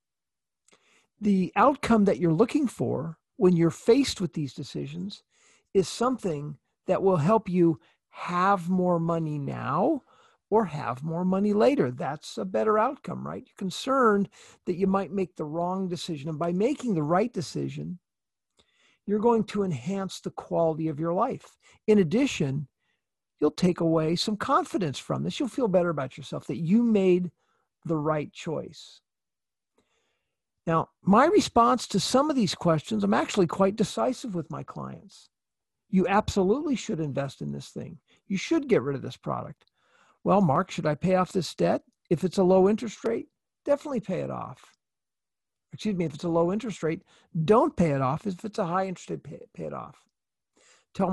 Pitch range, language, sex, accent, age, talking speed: 160-215 Hz, English, male, American, 50-69, 170 wpm